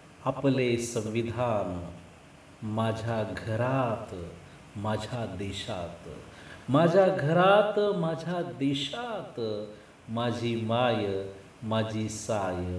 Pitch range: 95-155 Hz